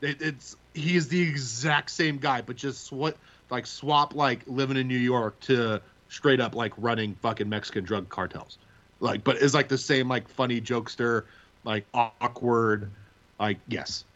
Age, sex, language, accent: 30-49, male, English, American